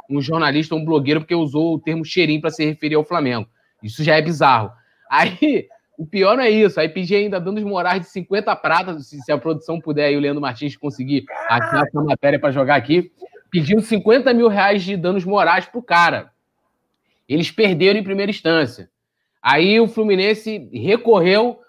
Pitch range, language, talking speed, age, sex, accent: 155-205 Hz, Portuguese, 185 wpm, 20-39, male, Brazilian